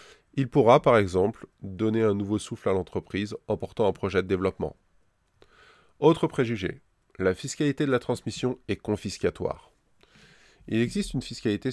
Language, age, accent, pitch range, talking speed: French, 20-39, French, 100-125 Hz, 150 wpm